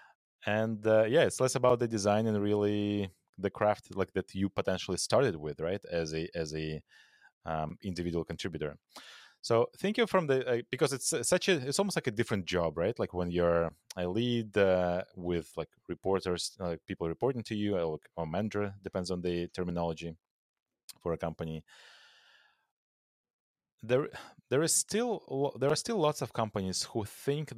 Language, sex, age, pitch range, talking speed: English, male, 30-49, 90-115 Hz, 170 wpm